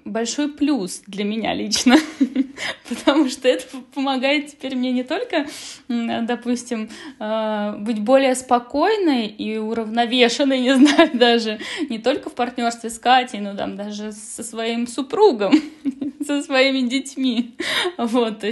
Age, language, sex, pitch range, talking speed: 20-39, Russian, female, 205-265 Hz, 125 wpm